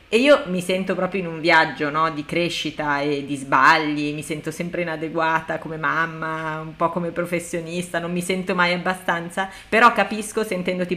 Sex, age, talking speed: female, 30-49, 175 wpm